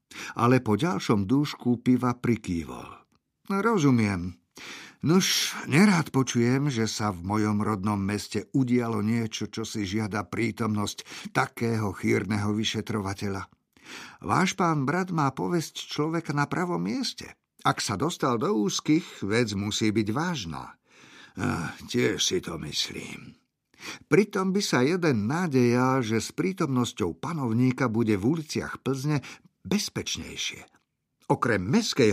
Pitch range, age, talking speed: 105-145 Hz, 50-69, 120 wpm